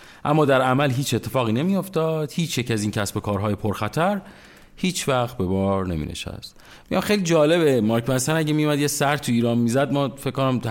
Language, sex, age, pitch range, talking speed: Persian, male, 30-49, 105-145 Hz, 200 wpm